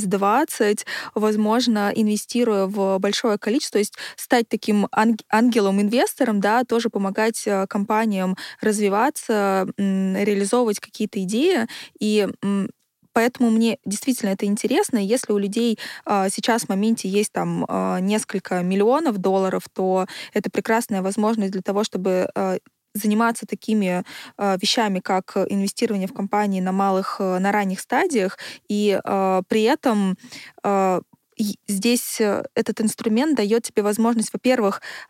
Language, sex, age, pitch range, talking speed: Russian, female, 20-39, 195-230 Hz, 115 wpm